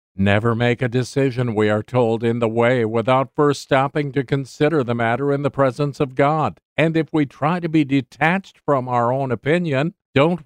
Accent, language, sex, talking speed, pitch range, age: American, English, male, 195 wpm, 115-140 Hz, 50-69